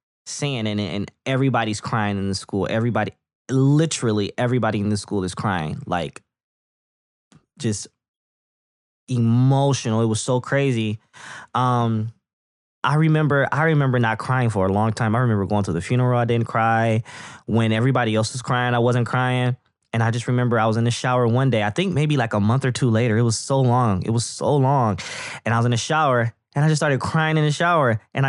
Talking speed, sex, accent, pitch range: 200 wpm, male, American, 105-130 Hz